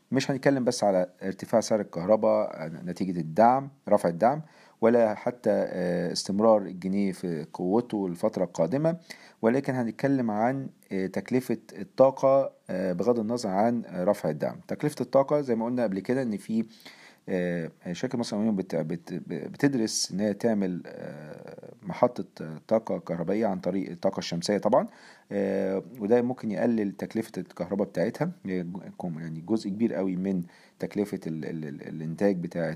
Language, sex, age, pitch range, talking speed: Arabic, male, 50-69, 90-120 Hz, 130 wpm